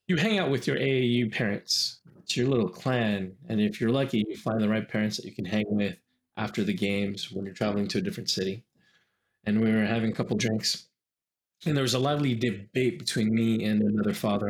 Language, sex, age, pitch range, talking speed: English, male, 20-39, 105-130 Hz, 220 wpm